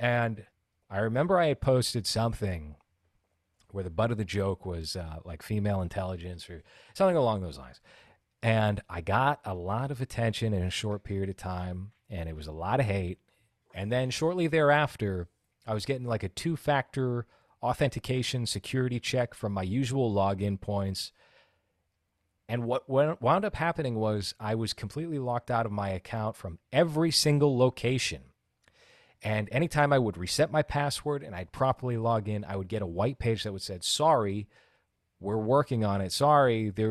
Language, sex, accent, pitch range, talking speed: English, male, American, 100-140 Hz, 175 wpm